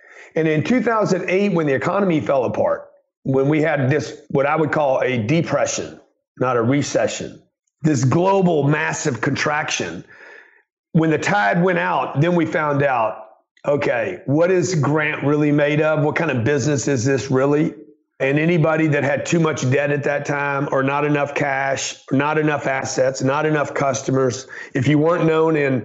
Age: 40-59